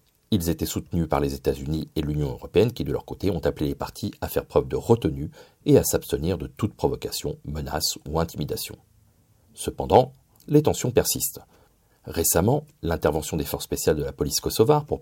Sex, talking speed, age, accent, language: male, 180 wpm, 40-59, French, French